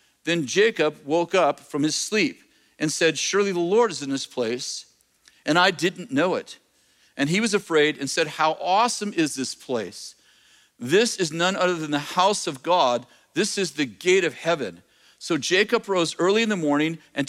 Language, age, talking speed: English, 50-69, 190 wpm